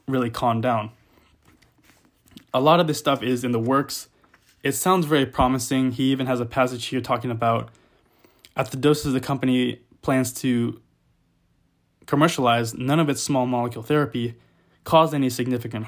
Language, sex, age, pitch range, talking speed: English, male, 20-39, 120-140 Hz, 155 wpm